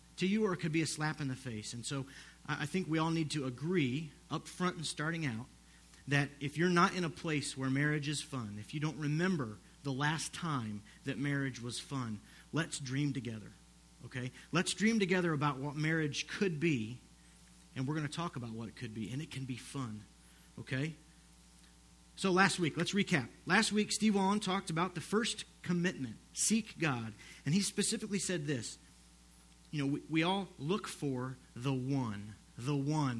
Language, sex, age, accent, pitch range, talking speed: English, male, 40-59, American, 125-175 Hz, 195 wpm